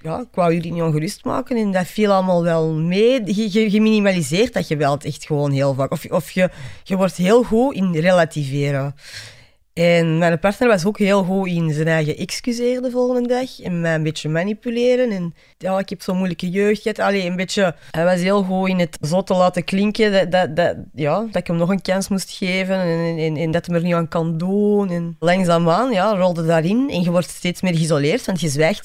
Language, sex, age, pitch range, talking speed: Dutch, female, 20-39, 150-195 Hz, 225 wpm